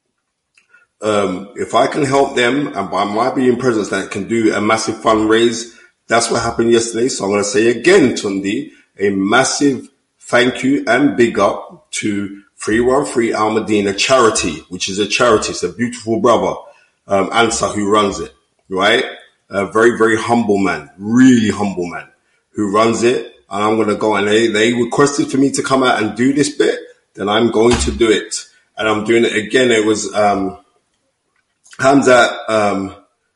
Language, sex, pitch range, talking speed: English, male, 105-135 Hz, 180 wpm